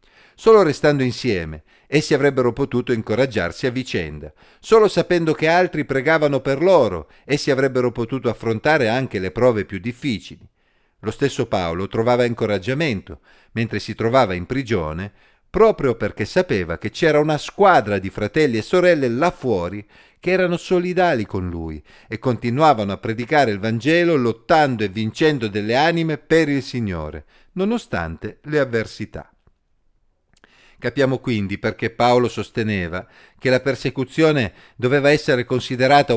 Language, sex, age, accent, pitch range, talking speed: Italian, male, 50-69, native, 105-145 Hz, 135 wpm